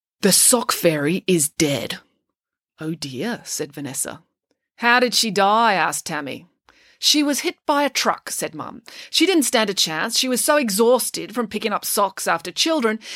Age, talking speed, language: 30-49, 175 wpm, English